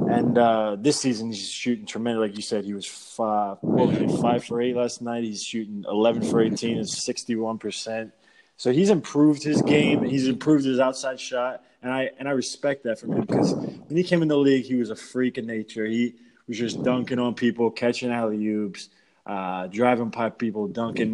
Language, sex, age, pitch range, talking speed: English, male, 20-39, 110-135 Hz, 200 wpm